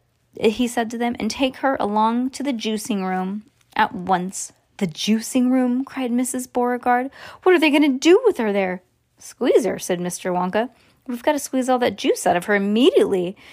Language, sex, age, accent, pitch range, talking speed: English, female, 20-39, American, 190-260 Hz, 195 wpm